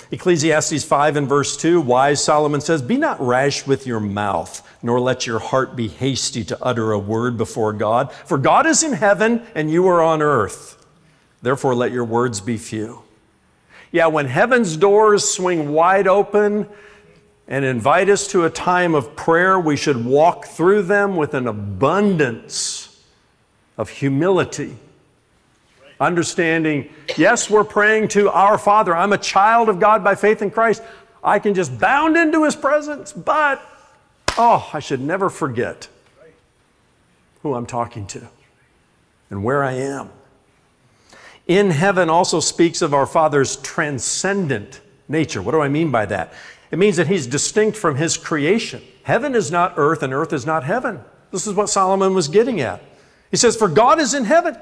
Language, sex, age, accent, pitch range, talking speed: English, male, 50-69, American, 135-205 Hz, 165 wpm